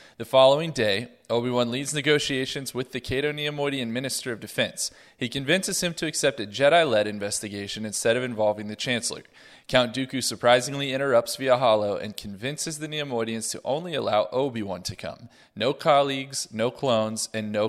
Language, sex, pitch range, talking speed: English, male, 110-135 Hz, 165 wpm